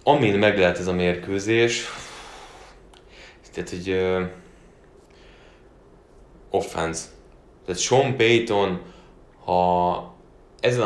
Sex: male